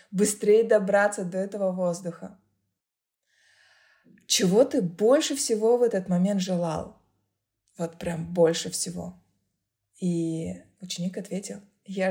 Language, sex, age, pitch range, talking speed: Russian, female, 20-39, 180-215 Hz, 105 wpm